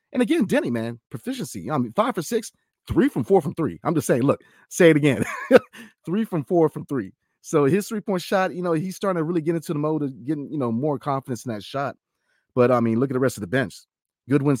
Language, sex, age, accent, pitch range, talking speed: English, male, 30-49, American, 110-145 Hz, 255 wpm